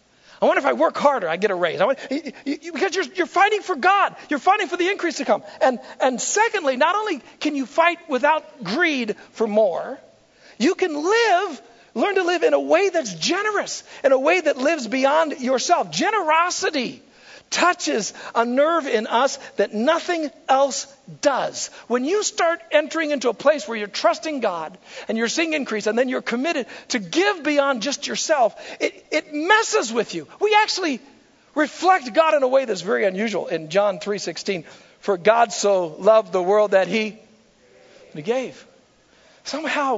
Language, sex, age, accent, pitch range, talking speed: English, male, 50-69, American, 220-330 Hz, 175 wpm